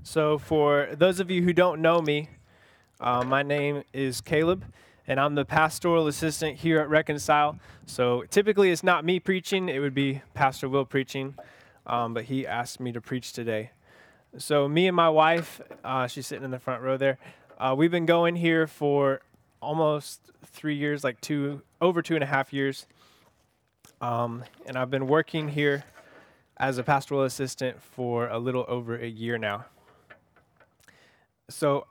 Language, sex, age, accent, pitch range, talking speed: English, male, 20-39, American, 130-165 Hz, 170 wpm